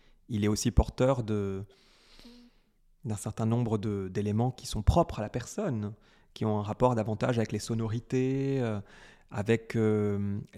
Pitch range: 105-130 Hz